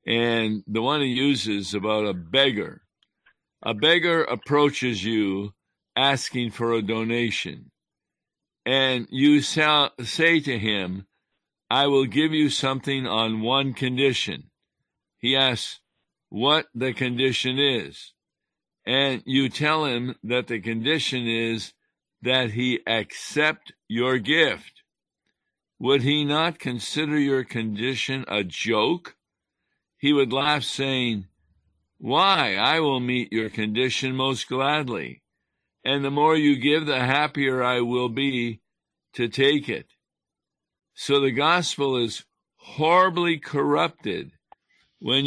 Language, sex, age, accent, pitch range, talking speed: English, male, 60-79, American, 115-145 Hz, 115 wpm